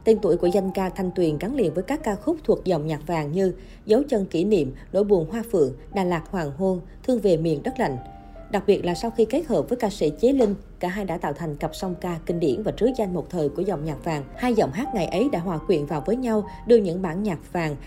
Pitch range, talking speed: 165-215 Hz, 275 wpm